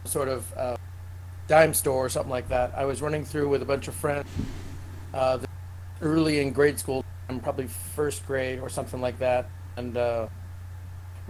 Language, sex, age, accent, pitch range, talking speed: English, male, 40-59, American, 90-140 Hz, 170 wpm